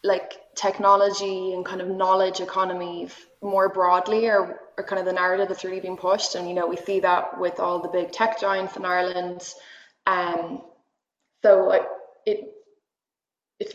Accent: Irish